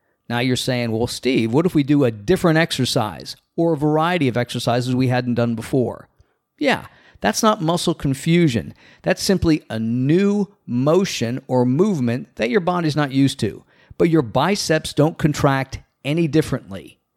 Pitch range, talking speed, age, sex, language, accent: 120-160 Hz, 160 wpm, 50-69, male, English, American